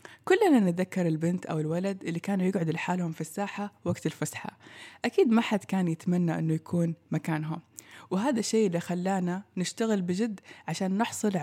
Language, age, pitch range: Persian, 20-39, 165-200 Hz